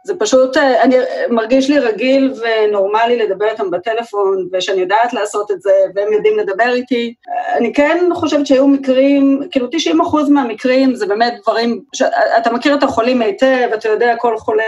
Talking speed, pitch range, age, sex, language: 170 wpm, 215-260 Hz, 30-49, female, Hebrew